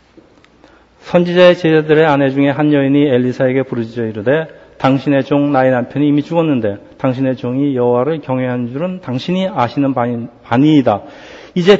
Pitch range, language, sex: 130-165 Hz, Korean, male